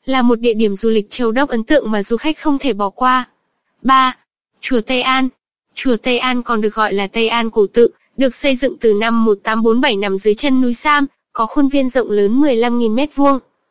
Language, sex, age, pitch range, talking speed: Vietnamese, female, 20-39, 220-275 Hz, 230 wpm